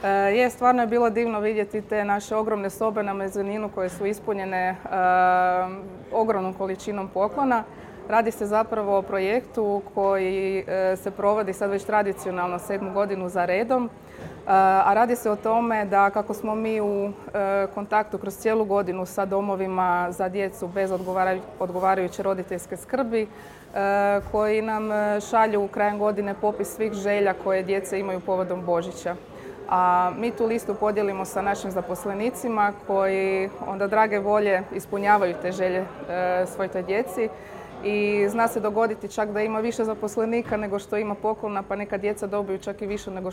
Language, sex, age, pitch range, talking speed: English, female, 20-39, 190-215 Hz, 160 wpm